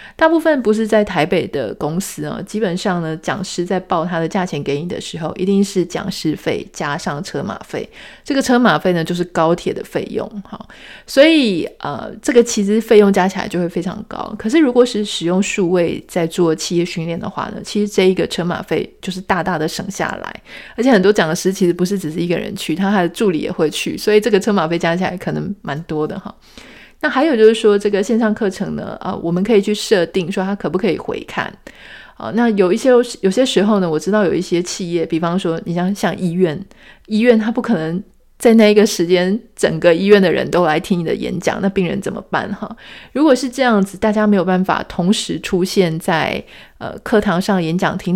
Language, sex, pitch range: Chinese, female, 175-215 Hz